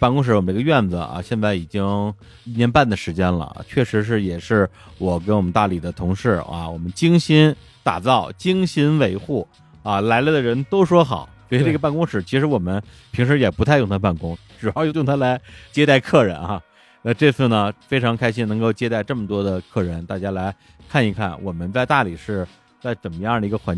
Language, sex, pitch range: Chinese, male, 100-145 Hz